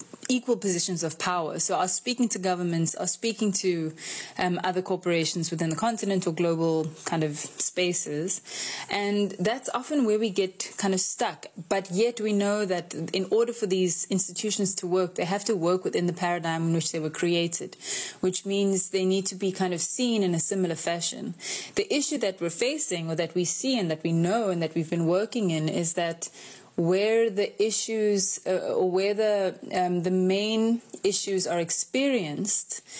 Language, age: Dutch, 20-39